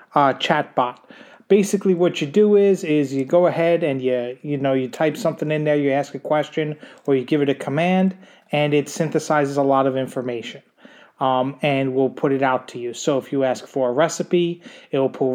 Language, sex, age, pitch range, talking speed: English, male, 30-49, 135-160 Hz, 220 wpm